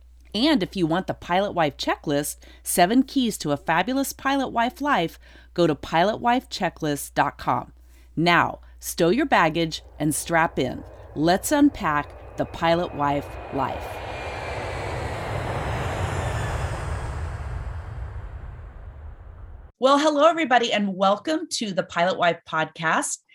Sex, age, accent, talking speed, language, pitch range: female, 30-49, American, 110 wpm, English, 155-230 Hz